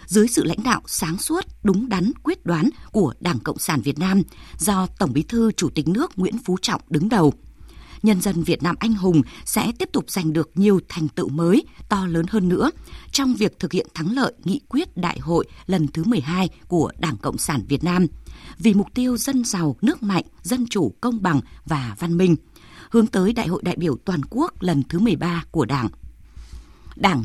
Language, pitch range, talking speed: Vietnamese, 160-220 Hz, 205 wpm